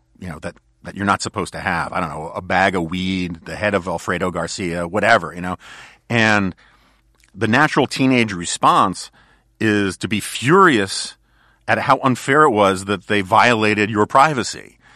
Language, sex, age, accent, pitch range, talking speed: English, male, 40-59, American, 100-125 Hz, 175 wpm